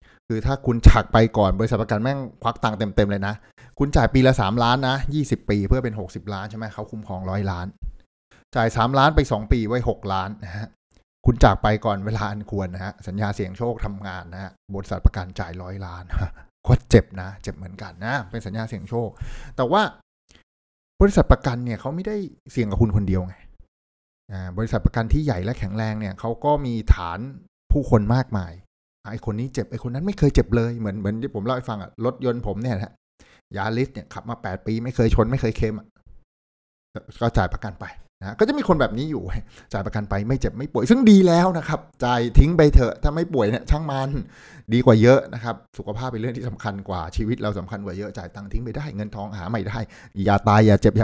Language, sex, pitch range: Thai, male, 95-125 Hz